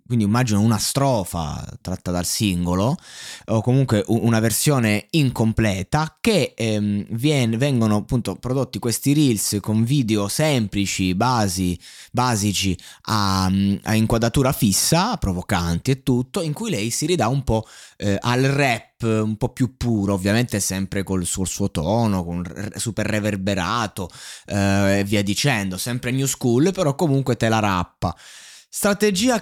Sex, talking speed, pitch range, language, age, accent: male, 135 wpm, 105-145 Hz, Italian, 20-39, native